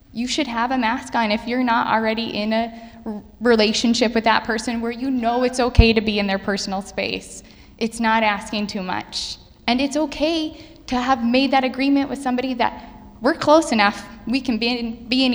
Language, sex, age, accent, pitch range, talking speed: English, female, 10-29, American, 210-255 Hz, 205 wpm